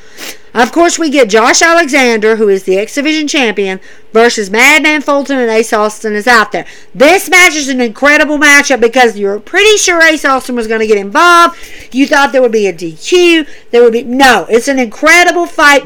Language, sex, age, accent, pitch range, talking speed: English, female, 50-69, American, 230-325 Hz, 200 wpm